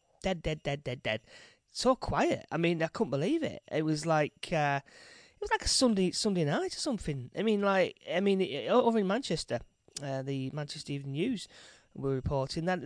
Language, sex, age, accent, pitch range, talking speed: English, male, 20-39, British, 140-200 Hz, 200 wpm